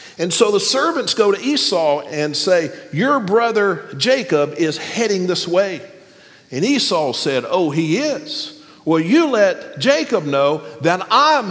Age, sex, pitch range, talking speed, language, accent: 50-69, male, 160-235 Hz, 150 wpm, English, American